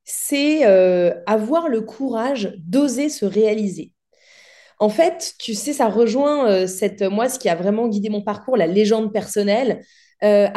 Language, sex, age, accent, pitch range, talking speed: French, female, 20-39, French, 220-285 Hz, 160 wpm